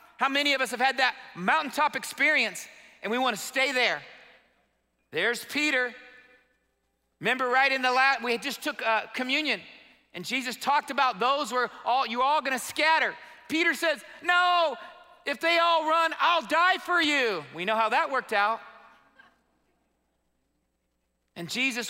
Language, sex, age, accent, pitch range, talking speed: English, male, 40-59, American, 225-290 Hz, 160 wpm